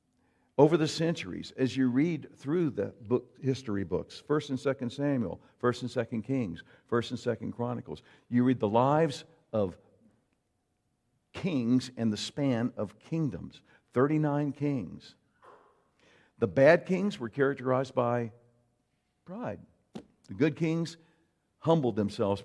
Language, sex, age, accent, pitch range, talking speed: English, male, 50-69, American, 115-145 Hz, 130 wpm